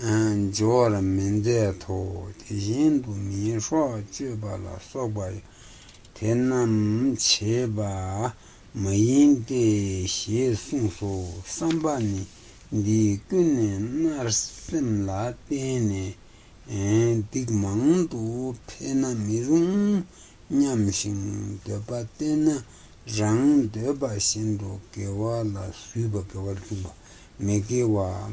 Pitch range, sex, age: 100-125 Hz, male, 60-79